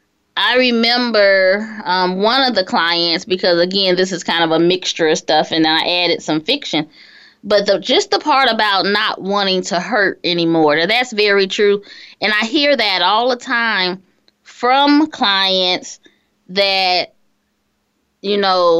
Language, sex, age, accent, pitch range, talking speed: English, female, 20-39, American, 185-245 Hz, 155 wpm